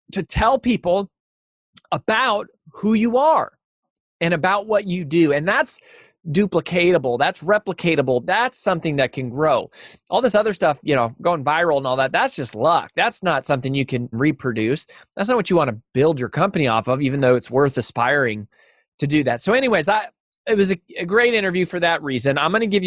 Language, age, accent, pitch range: English, 30-49, American, 130-200 Hz